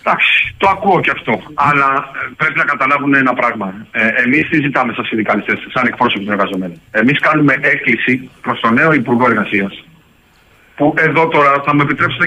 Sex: male